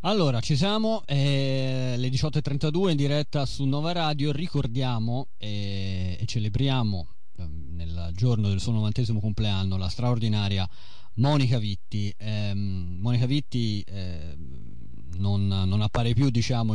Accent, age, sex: native, 30-49, male